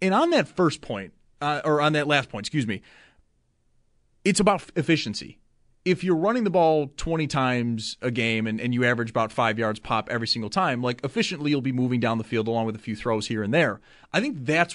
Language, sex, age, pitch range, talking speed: English, male, 30-49, 115-165 Hz, 225 wpm